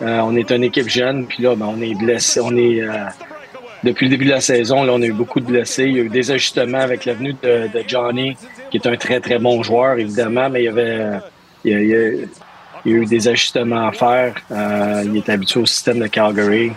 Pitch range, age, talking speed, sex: 110-125 Hz, 30-49, 260 wpm, male